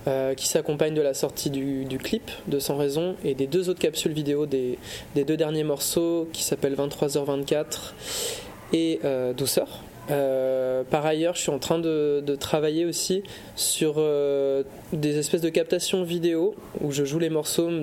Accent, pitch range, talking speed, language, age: French, 135-160 Hz, 175 wpm, French, 20-39